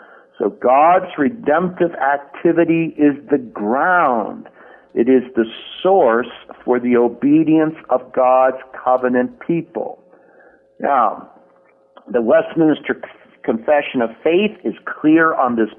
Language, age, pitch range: English, 50-69, 115-155 Hz